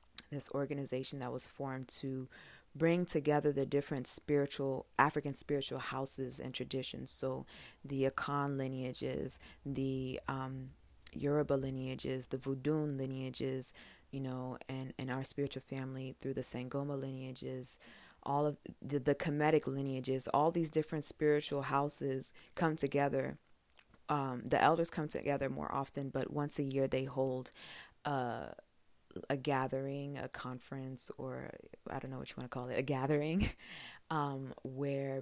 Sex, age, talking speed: female, 20-39, 145 wpm